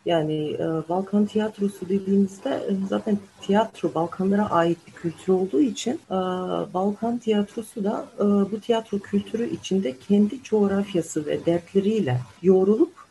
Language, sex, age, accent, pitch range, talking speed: Turkish, female, 40-59, native, 160-215 Hz, 130 wpm